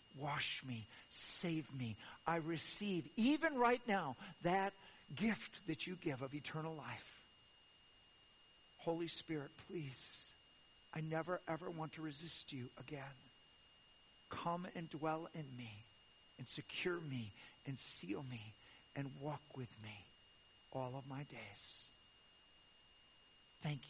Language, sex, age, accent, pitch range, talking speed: English, male, 50-69, American, 120-170 Hz, 120 wpm